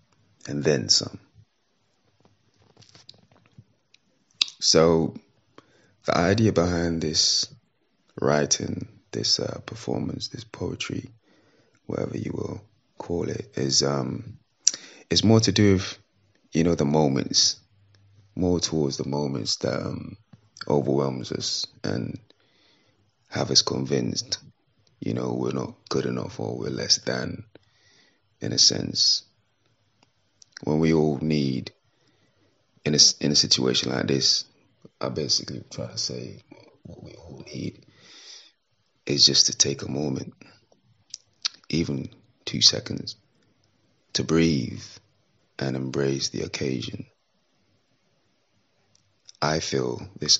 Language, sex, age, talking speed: English, male, 30-49, 110 wpm